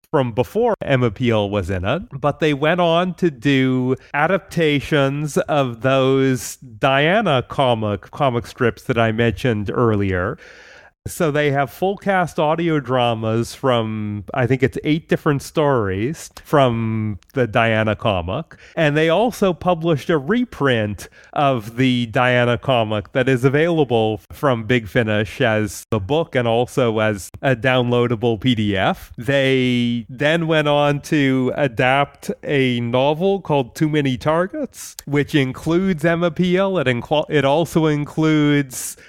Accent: American